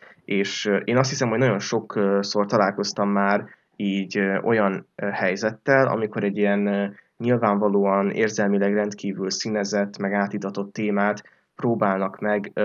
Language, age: Hungarian, 20-39